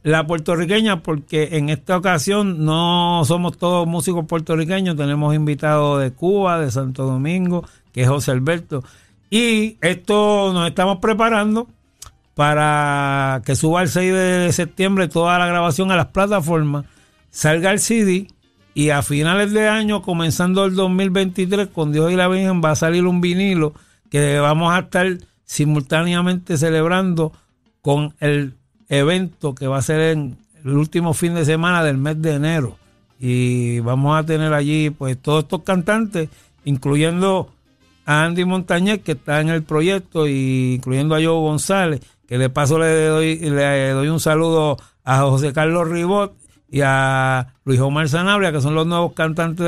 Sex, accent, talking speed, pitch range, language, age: male, American, 155 wpm, 145-180 Hz, Spanish, 60-79